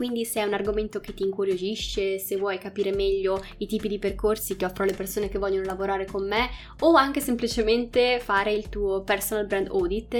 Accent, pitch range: native, 195-220 Hz